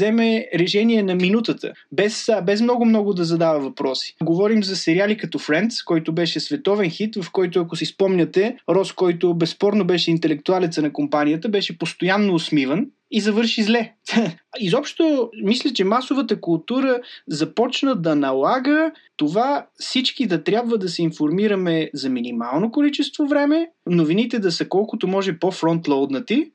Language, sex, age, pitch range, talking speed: Bulgarian, male, 20-39, 165-235 Hz, 140 wpm